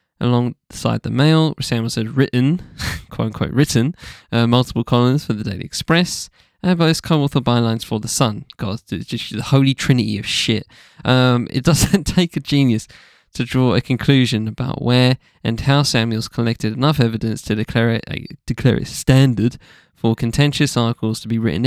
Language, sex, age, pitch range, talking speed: English, male, 10-29, 115-145 Hz, 170 wpm